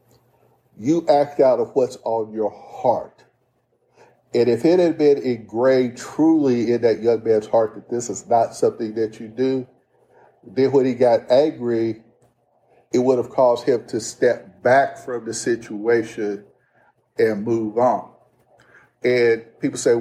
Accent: American